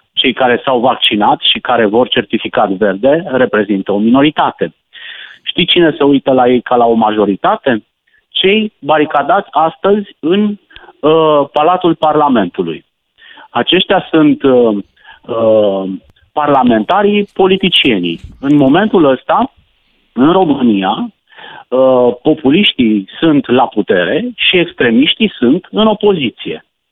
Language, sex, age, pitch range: Romanian, male, 40-59, 125-190 Hz